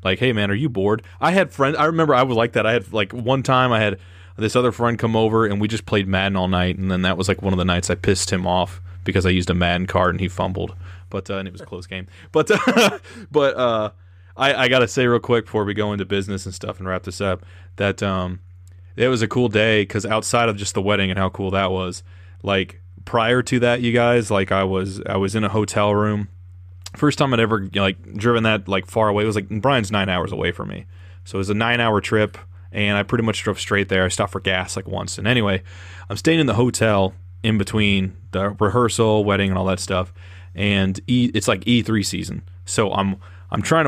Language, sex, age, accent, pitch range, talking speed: English, male, 20-39, American, 95-110 Hz, 250 wpm